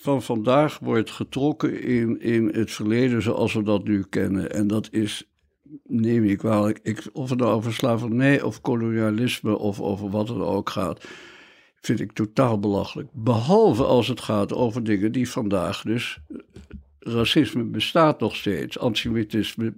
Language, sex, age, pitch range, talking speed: Dutch, male, 60-79, 105-130 Hz, 150 wpm